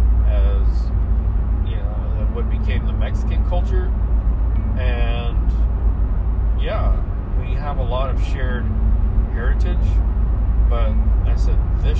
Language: English